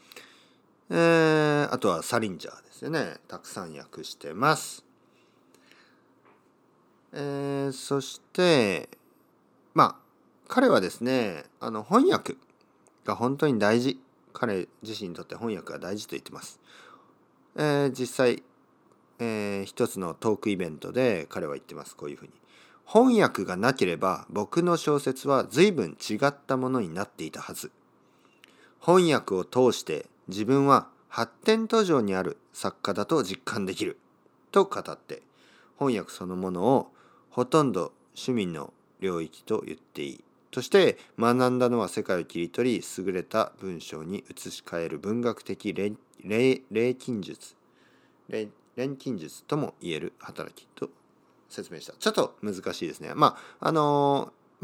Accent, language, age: native, Japanese, 40-59